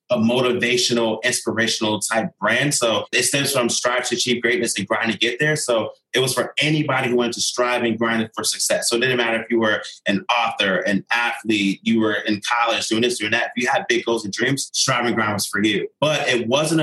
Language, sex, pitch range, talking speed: English, male, 115-135 Hz, 230 wpm